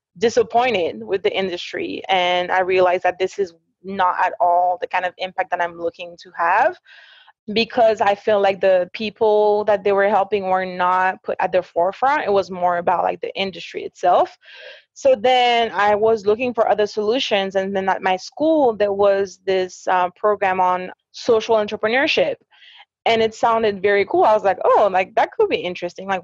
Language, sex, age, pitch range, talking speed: English, female, 20-39, 185-230 Hz, 190 wpm